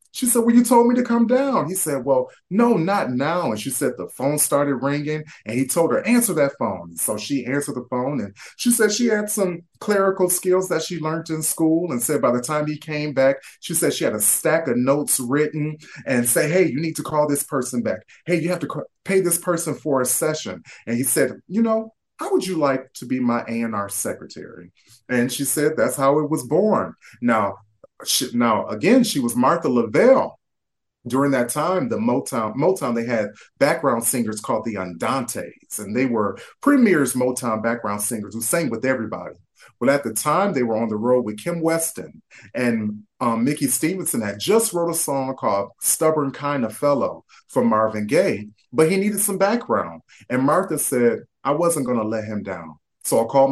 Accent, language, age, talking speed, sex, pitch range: American, English, 30-49, 205 wpm, male, 120-180 Hz